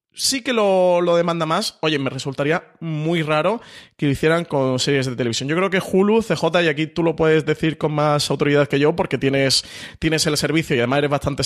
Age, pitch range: 30-49, 135-170 Hz